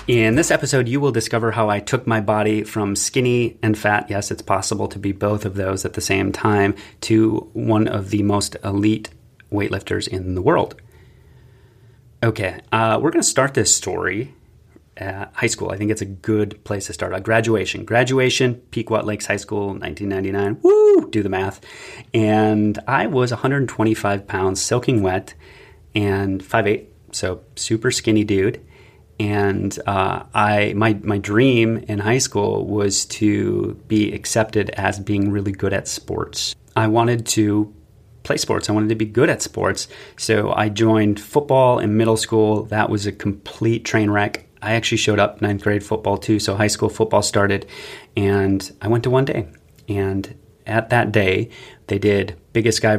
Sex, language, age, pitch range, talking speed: male, English, 30-49, 100-115 Hz, 170 wpm